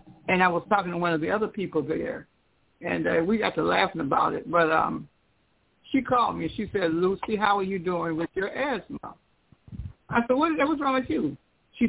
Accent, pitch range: American, 175-230 Hz